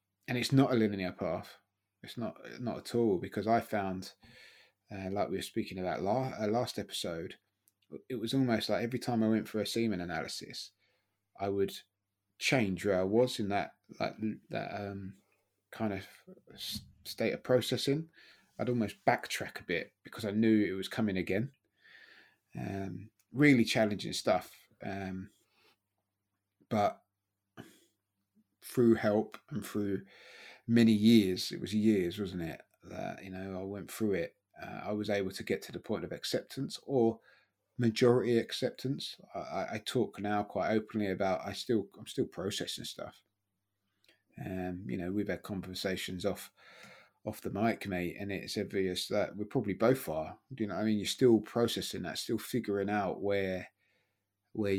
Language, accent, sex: English, British, male